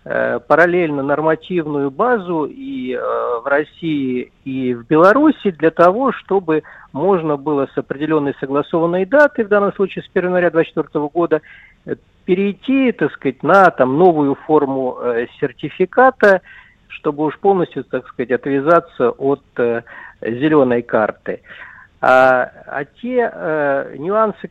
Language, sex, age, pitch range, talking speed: Russian, male, 50-69, 135-190 Hz, 125 wpm